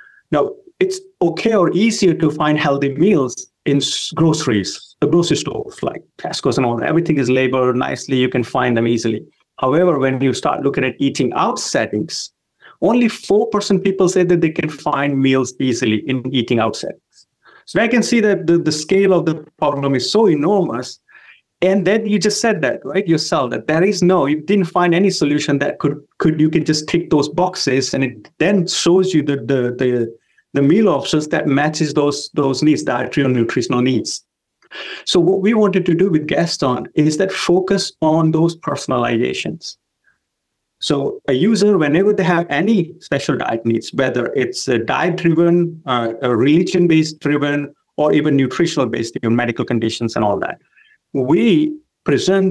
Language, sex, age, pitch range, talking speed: English, male, 30-49, 135-185 Hz, 175 wpm